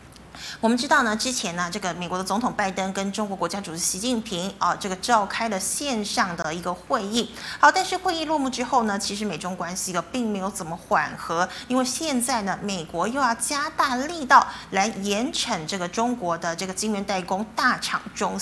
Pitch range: 190-245 Hz